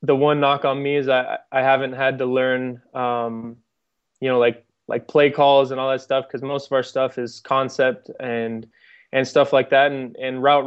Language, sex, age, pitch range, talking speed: English, male, 20-39, 125-140 Hz, 215 wpm